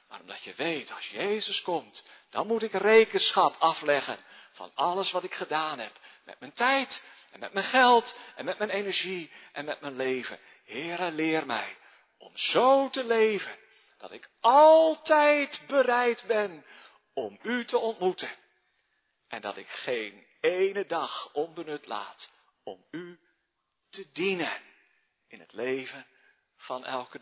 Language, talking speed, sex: Dutch, 145 wpm, male